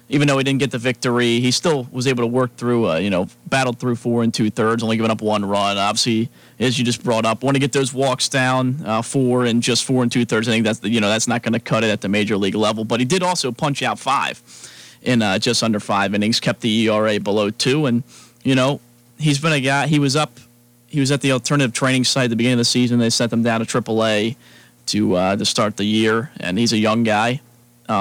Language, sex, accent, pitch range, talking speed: English, male, American, 110-125 Hz, 260 wpm